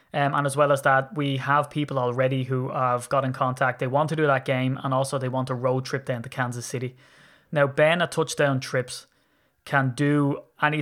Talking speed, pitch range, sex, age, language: 220 wpm, 130-145 Hz, male, 20-39, English